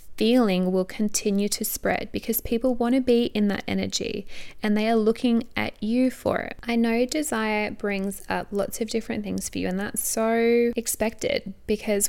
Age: 10-29